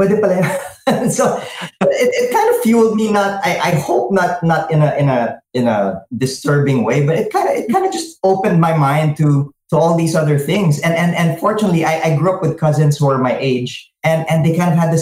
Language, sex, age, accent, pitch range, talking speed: English, male, 20-39, Filipino, 120-165 Hz, 240 wpm